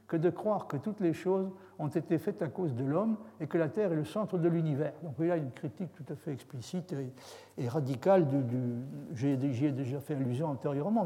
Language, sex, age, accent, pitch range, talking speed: French, male, 60-79, French, 135-170 Hz, 235 wpm